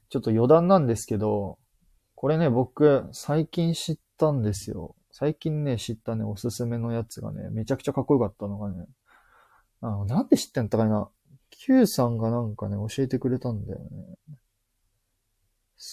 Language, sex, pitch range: Japanese, male, 110-155 Hz